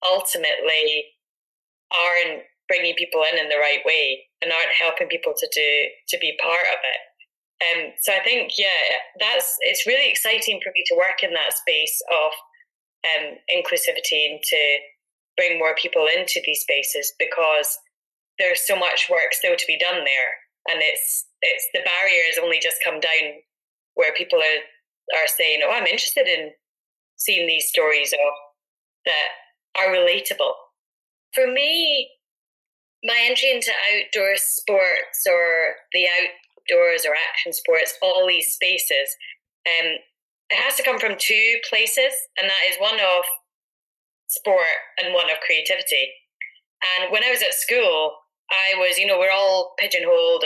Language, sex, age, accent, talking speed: English, female, 20-39, British, 155 wpm